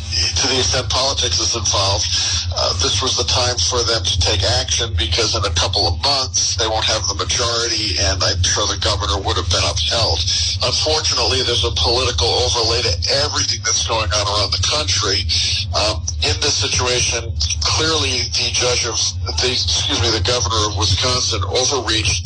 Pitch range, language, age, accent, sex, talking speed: 90-105 Hz, English, 50-69, American, male, 175 wpm